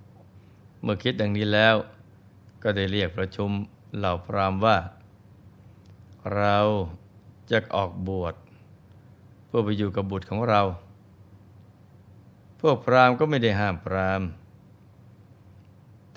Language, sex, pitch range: Thai, male, 100-115 Hz